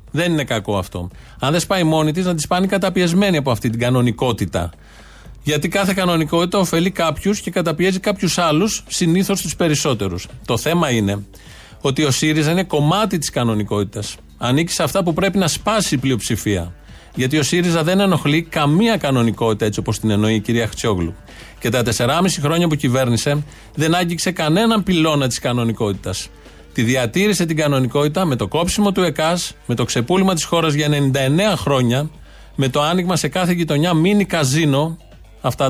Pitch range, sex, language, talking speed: 120-175 Hz, male, Greek, 170 wpm